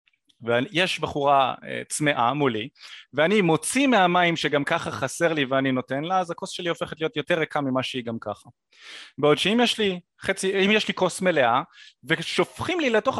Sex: male